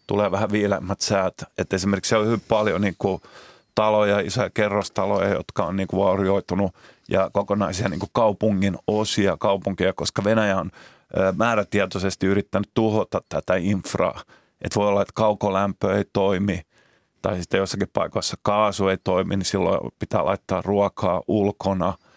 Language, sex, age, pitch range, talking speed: Finnish, male, 30-49, 95-105 Hz, 145 wpm